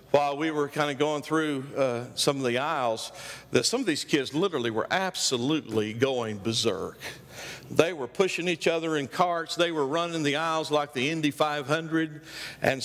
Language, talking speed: English, 180 wpm